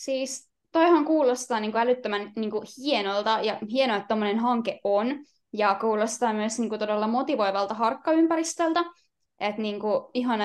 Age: 20-39